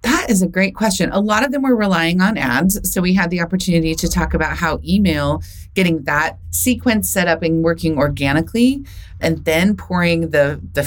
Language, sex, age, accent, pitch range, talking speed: English, female, 30-49, American, 150-180 Hz, 200 wpm